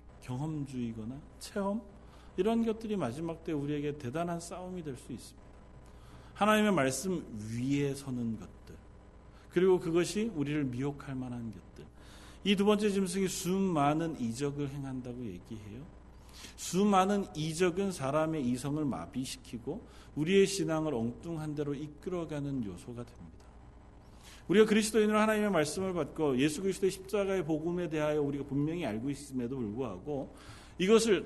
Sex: male